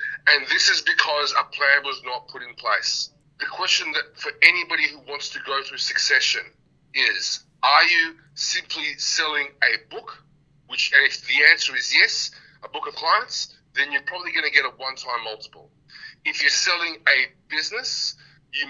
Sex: male